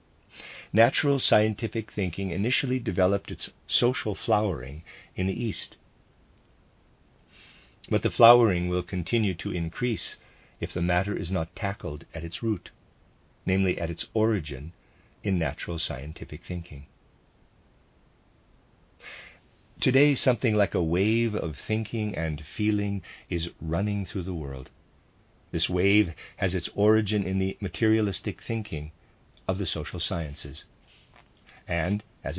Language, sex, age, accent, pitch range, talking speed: English, male, 50-69, American, 85-110 Hz, 120 wpm